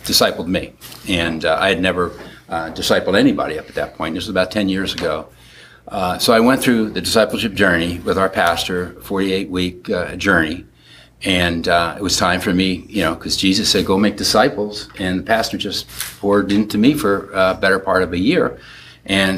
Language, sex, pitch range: English, male, 90-105 Hz